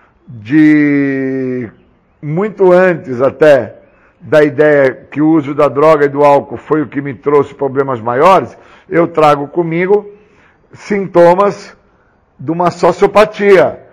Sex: male